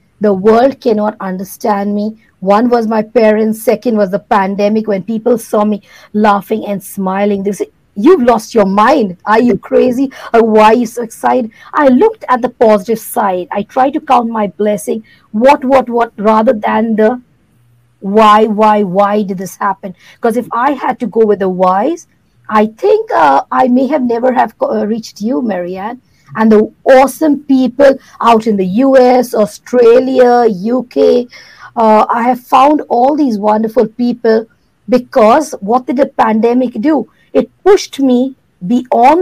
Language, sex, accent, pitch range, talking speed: English, female, Indian, 205-250 Hz, 160 wpm